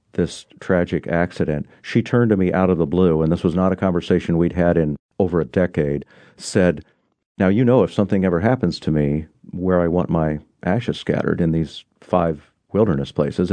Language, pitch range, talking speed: English, 80-95 Hz, 195 wpm